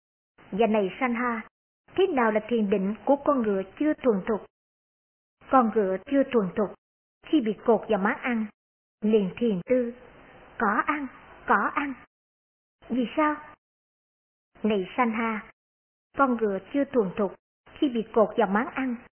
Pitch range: 215-275 Hz